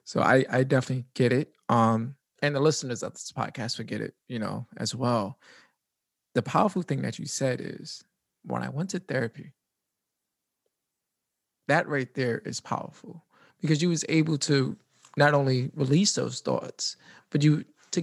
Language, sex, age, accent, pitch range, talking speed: English, male, 20-39, American, 130-170 Hz, 165 wpm